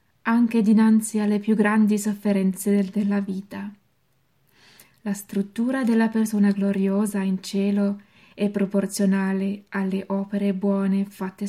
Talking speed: 110 wpm